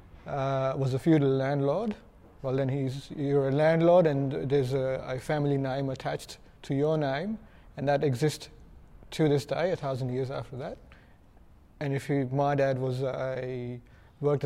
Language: English